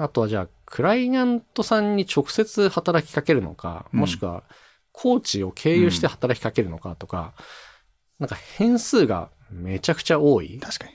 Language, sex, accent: Japanese, male, native